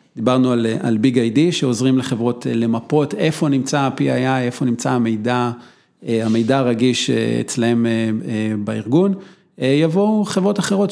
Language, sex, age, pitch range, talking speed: Hebrew, male, 40-59, 120-150 Hz, 115 wpm